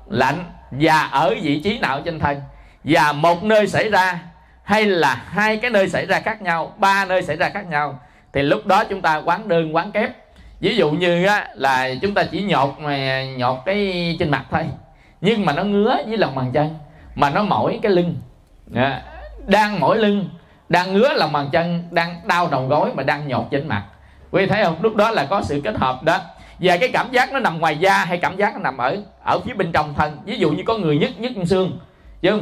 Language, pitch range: English, 145-195 Hz